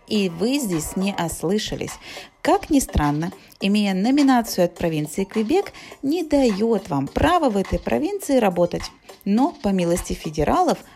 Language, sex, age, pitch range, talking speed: Russian, female, 30-49, 165-255 Hz, 135 wpm